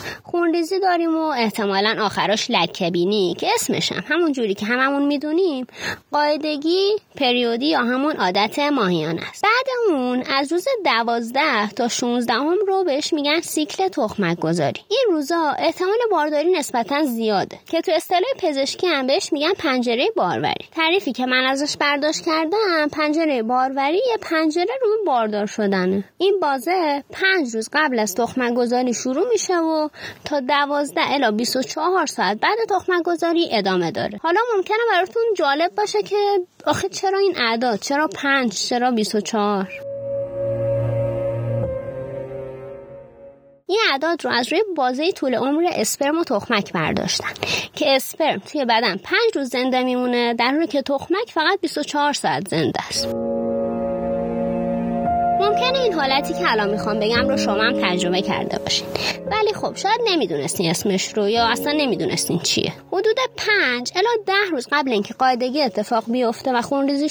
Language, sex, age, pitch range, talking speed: Persian, female, 20-39, 225-340 Hz, 140 wpm